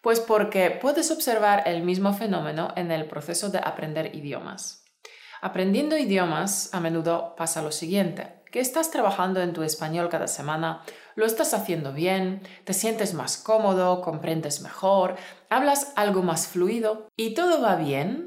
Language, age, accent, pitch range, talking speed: Spanish, 30-49, Spanish, 165-220 Hz, 150 wpm